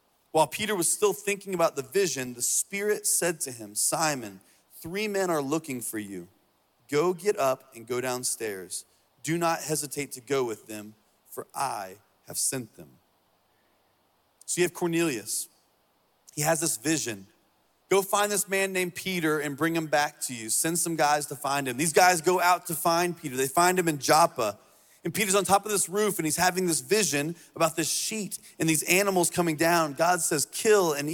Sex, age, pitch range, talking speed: male, 30-49, 145-185 Hz, 195 wpm